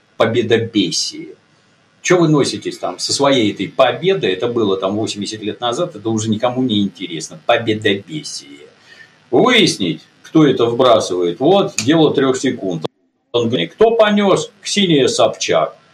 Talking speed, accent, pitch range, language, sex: 130 wpm, native, 120-190 Hz, Russian, male